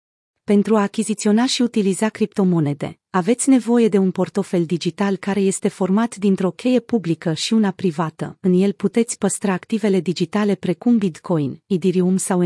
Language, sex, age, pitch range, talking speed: Romanian, female, 30-49, 175-220 Hz, 150 wpm